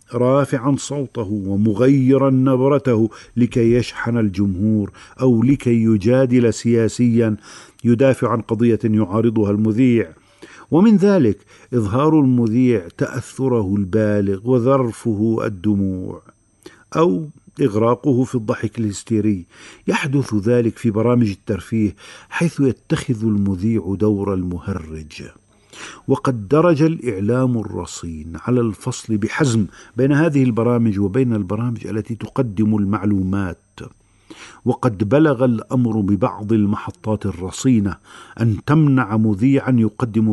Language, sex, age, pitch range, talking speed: Arabic, male, 50-69, 105-130 Hz, 95 wpm